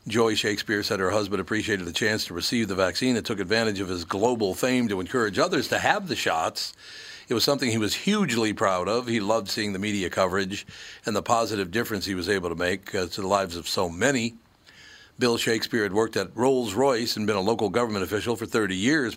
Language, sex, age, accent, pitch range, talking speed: English, male, 60-79, American, 95-125 Hz, 220 wpm